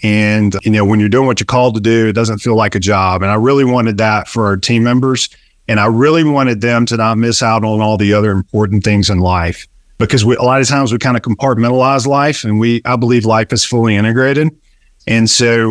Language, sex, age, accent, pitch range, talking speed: English, male, 40-59, American, 105-125 Hz, 245 wpm